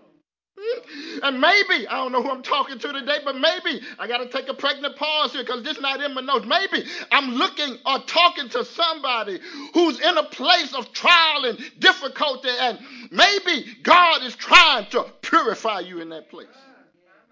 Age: 50-69